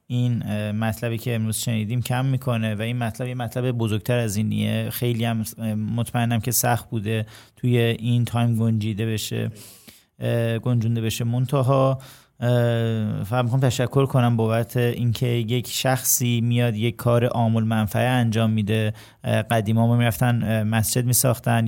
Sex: male